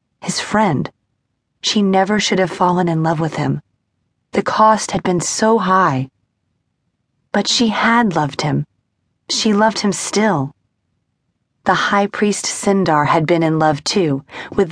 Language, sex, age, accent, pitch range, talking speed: English, female, 30-49, American, 170-225 Hz, 145 wpm